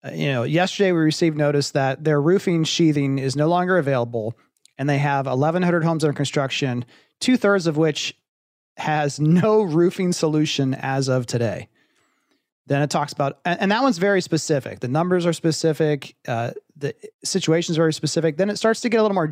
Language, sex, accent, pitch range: English, male, American, 140-175 Hz